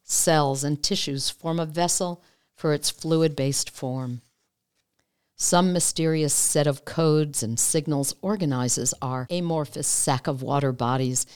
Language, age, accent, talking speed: English, 50-69, American, 125 wpm